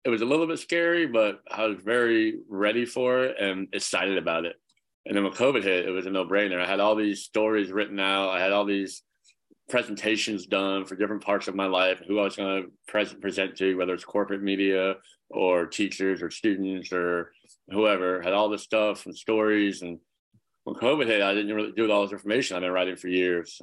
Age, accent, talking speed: 30-49, American, 220 wpm